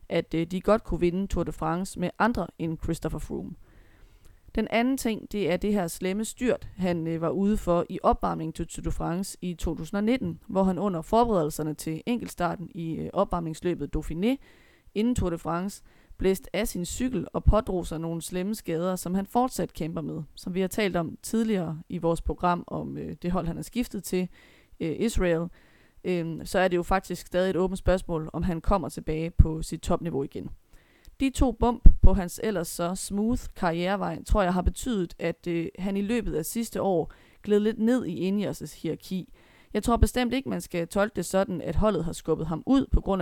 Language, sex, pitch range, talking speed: Danish, female, 165-205 Hz, 195 wpm